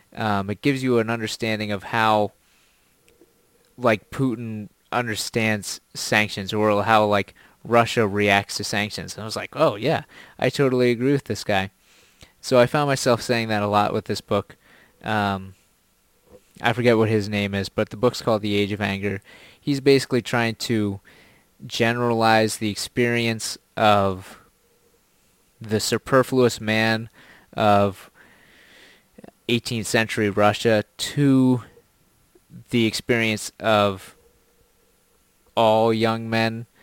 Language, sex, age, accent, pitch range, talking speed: English, male, 20-39, American, 100-120 Hz, 130 wpm